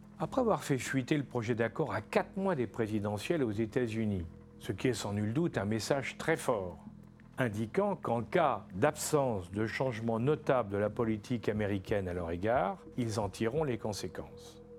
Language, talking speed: French, 175 wpm